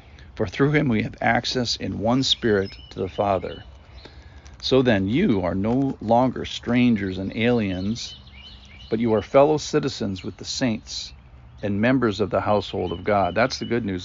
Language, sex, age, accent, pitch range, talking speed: English, male, 50-69, American, 95-115 Hz, 170 wpm